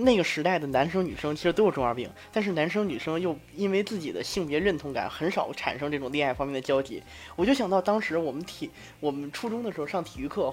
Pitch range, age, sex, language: 150-245 Hz, 20-39, male, Chinese